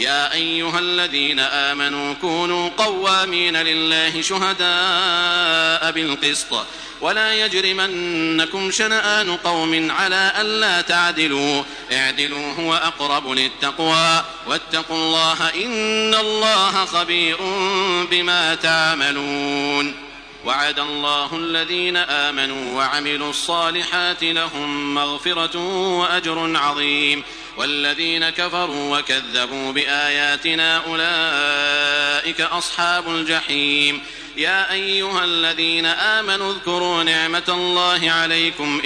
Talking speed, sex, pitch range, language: 80 wpm, male, 145-175 Hz, Arabic